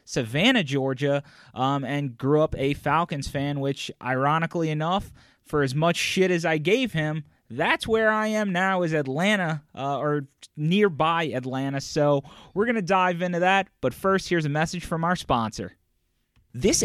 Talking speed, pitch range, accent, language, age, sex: 165 wpm, 120-165 Hz, American, English, 30-49, male